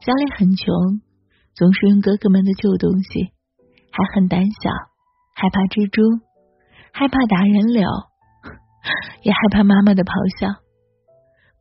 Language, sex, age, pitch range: Chinese, female, 20-39, 185-225 Hz